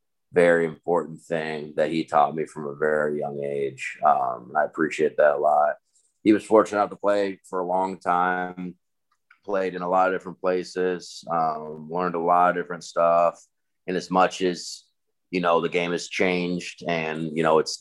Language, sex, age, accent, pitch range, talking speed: English, male, 30-49, American, 80-110 Hz, 190 wpm